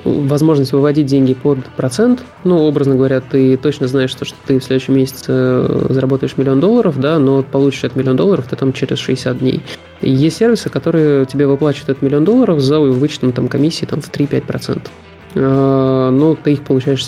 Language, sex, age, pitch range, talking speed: Russian, male, 20-39, 135-155 Hz, 175 wpm